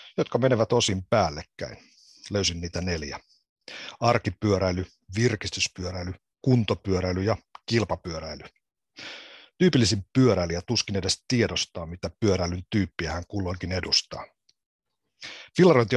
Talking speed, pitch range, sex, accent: 90 wpm, 90-110 Hz, male, native